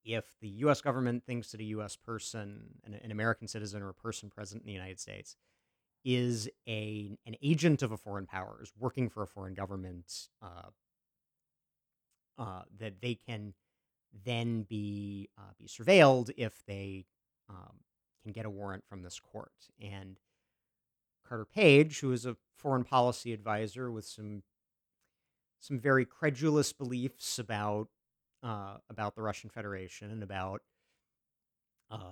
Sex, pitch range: male, 100-120 Hz